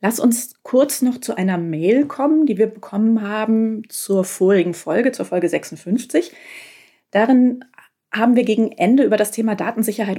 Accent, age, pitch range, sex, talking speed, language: German, 30-49, 175-225 Hz, female, 160 wpm, German